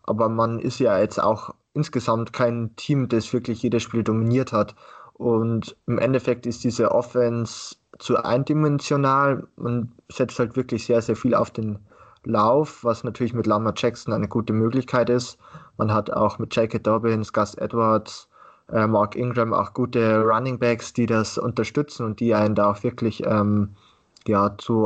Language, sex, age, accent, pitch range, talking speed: German, male, 20-39, German, 110-125 Hz, 165 wpm